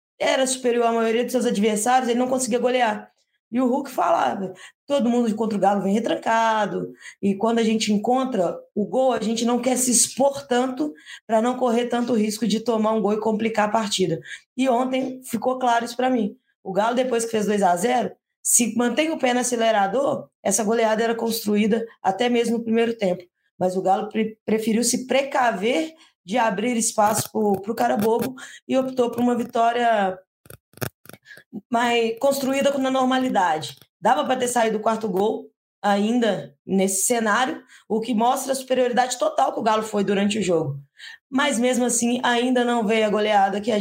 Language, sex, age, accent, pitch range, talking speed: Portuguese, female, 20-39, Brazilian, 210-250 Hz, 180 wpm